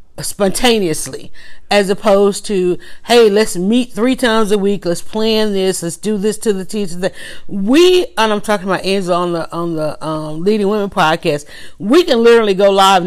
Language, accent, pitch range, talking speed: English, American, 175-215 Hz, 180 wpm